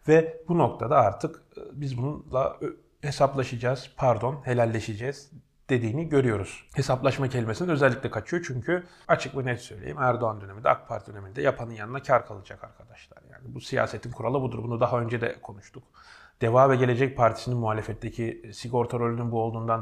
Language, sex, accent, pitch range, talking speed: Turkish, male, native, 115-140 Hz, 150 wpm